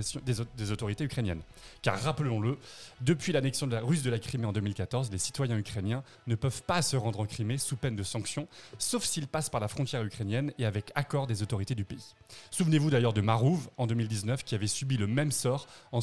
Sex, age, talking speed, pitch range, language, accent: male, 30-49, 210 wpm, 110-135 Hz, French, French